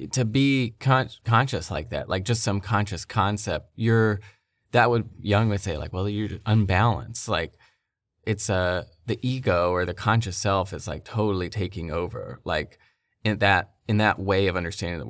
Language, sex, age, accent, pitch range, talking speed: English, male, 20-39, American, 90-110 Hz, 175 wpm